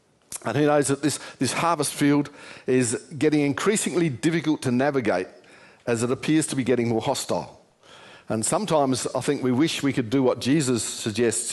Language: English